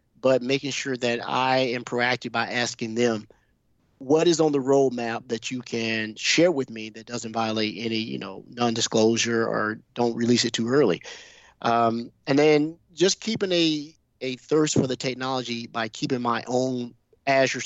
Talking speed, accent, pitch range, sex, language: 170 wpm, American, 115-130 Hz, male, English